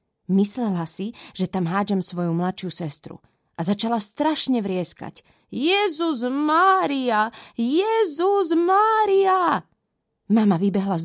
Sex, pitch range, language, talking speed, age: female, 175-230 Hz, Slovak, 105 wpm, 20-39